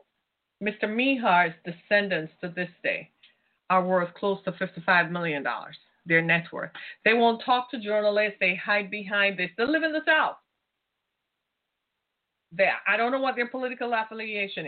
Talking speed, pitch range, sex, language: 150 wpm, 180-245 Hz, female, English